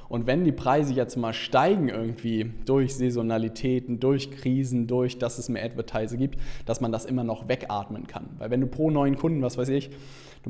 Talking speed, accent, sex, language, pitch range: 200 wpm, German, male, German, 115-135 Hz